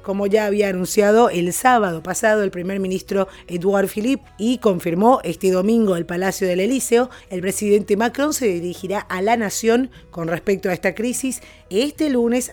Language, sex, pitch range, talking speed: Spanish, female, 180-230 Hz, 170 wpm